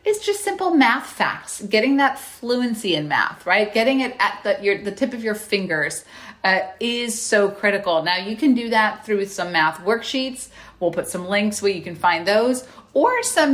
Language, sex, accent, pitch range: English, female, American, 185-255 Hz